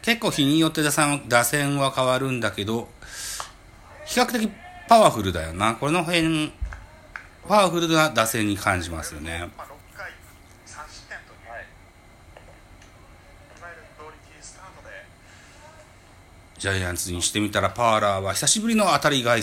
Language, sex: Japanese, male